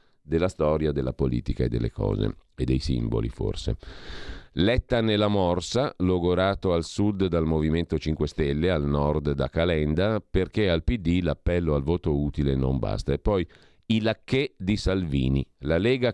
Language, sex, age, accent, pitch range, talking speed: Italian, male, 40-59, native, 80-105 Hz, 155 wpm